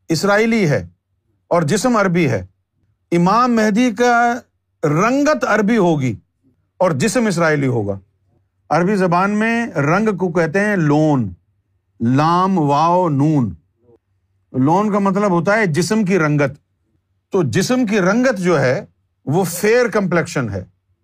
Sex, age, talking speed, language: male, 50-69, 130 wpm, Urdu